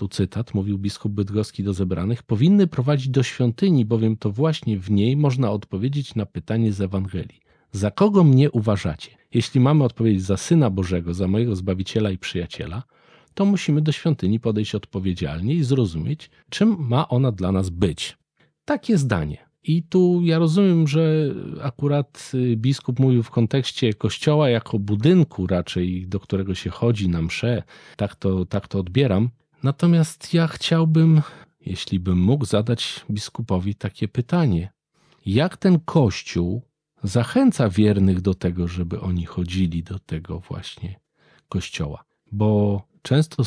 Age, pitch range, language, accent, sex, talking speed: 40-59, 100-145 Hz, Polish, native, male, 140 wpm